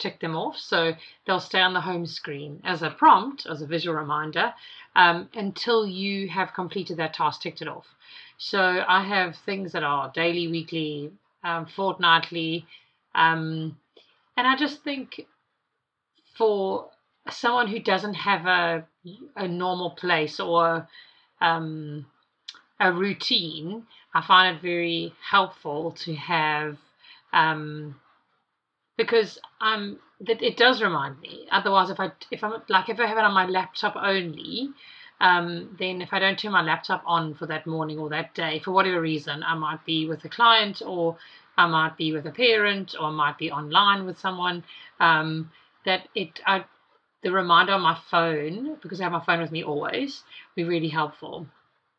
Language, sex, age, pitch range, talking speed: English, female, 30-49, 160-195 Hz, 165 wpm